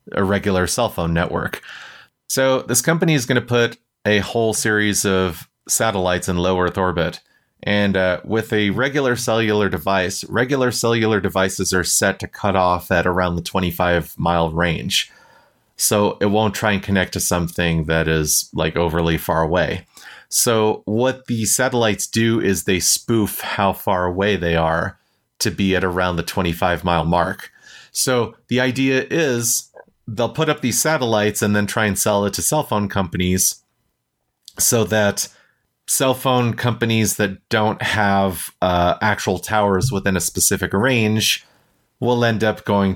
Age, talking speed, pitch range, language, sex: 30-49, 160 wpm, 90-115 Hz, English, male